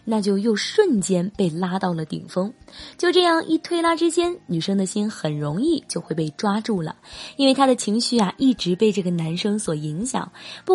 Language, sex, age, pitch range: Chinese, female, 20-39, 190-285 Hz